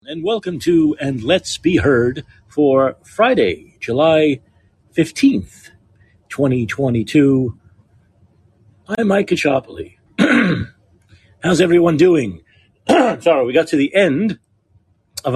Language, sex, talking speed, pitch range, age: English, male, 100 wpm, 105-155 Hz, 50-69